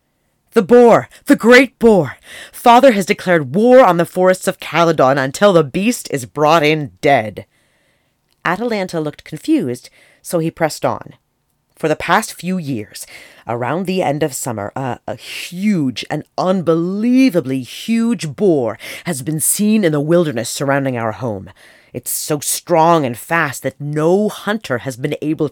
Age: 40-59